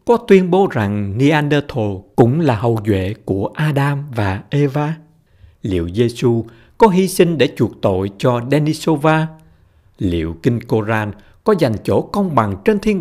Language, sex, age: Vietnamese, male, 60-79